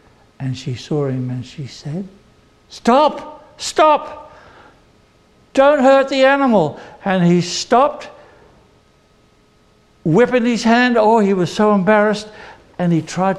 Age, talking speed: 60-79, 120 wpm